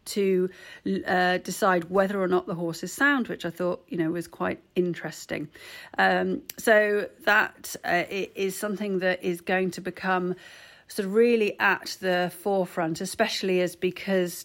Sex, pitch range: female, 175-200 Hz